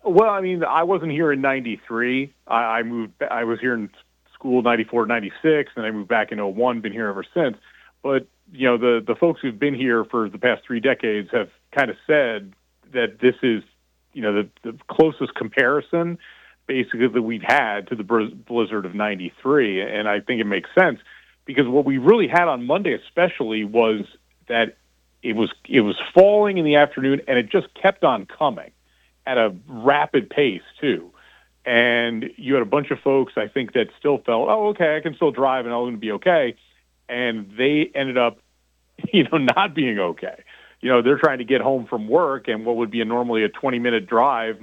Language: English